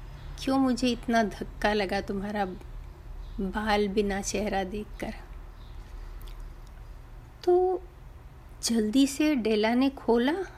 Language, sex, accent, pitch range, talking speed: Hindi, female, native, 210-245 Hz, 90 wpm